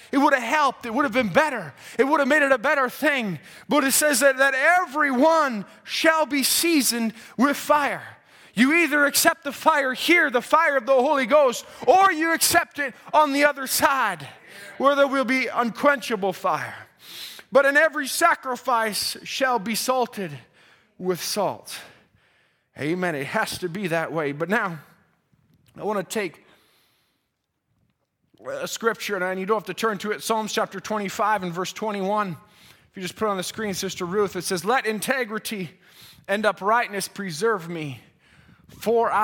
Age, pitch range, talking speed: 20-39, 185-260 Hz, 170 wpm